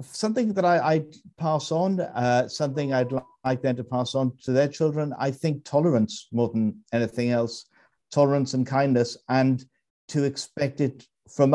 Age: 60-79